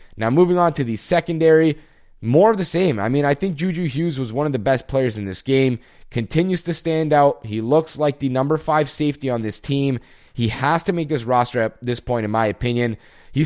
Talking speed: 230 wpm